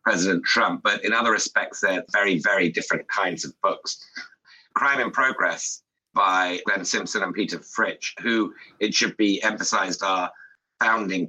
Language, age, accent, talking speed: English, 50-69, British, 155 wpm